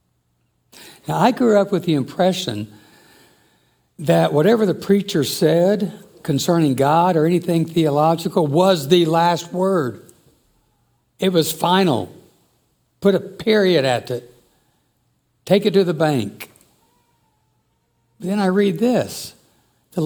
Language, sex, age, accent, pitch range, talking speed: English, male, 60-79, American, 135-185 Hz, 115 wpm